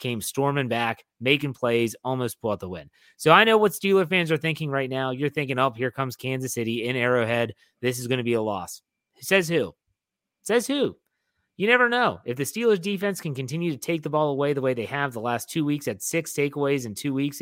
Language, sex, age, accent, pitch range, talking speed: English, male, 30-49, American, 120-150 Hz, 235 wpm